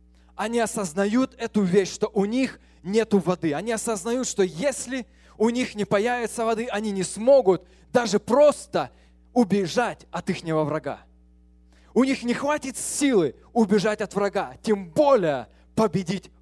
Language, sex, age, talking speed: English, male, 20-39, 140 wpm